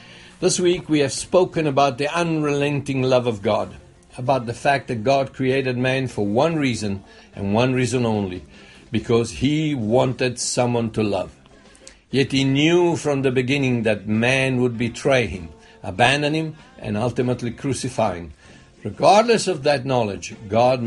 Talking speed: 150 wpm